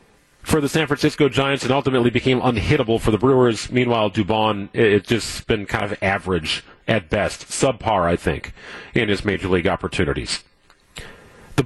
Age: 40-59